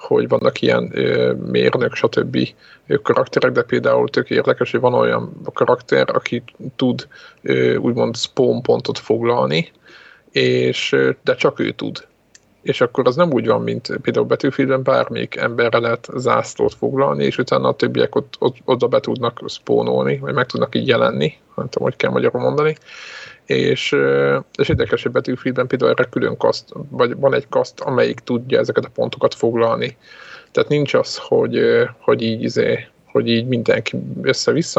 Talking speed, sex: 150 wpm, male